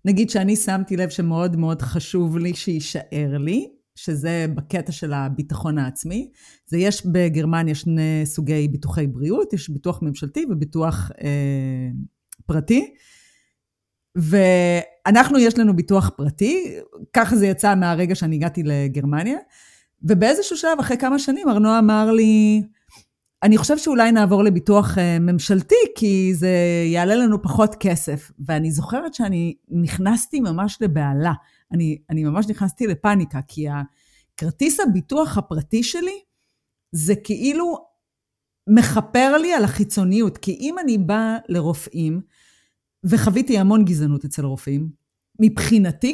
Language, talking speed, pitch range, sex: Hebrew, 120 wpm, 160-225 Hz, female